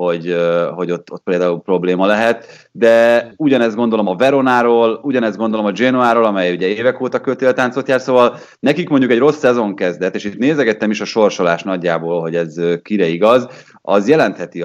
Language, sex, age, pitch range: Hungarian, male, 30-49, 90-115 Hz